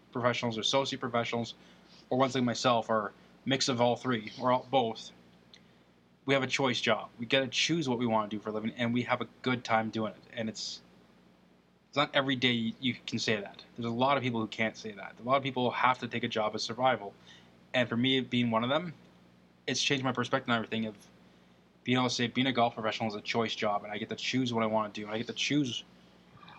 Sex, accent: male, American